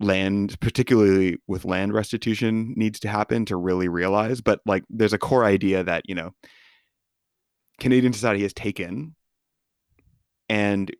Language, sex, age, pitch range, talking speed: English, male, 30-49, 95-105 Hz, 135 wpm